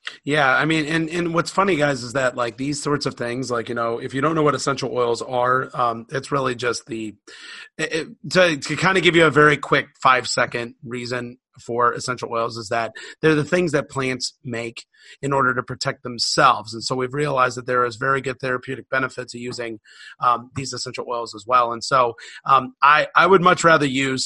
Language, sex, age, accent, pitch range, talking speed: English, male, 30-49, American, 120-135 Hz, 220 wpm